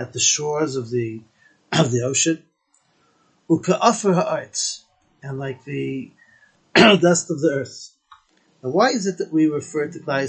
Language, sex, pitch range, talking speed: English, male, 140-195 Hz, 145 wpm